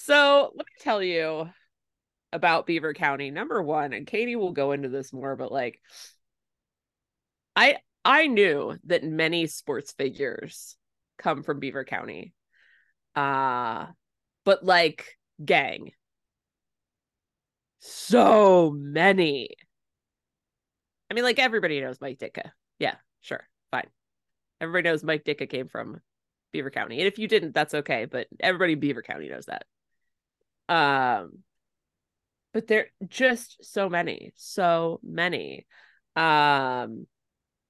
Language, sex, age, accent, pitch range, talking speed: English, female, 20-39, American, 140-200 Hz, 125 wpm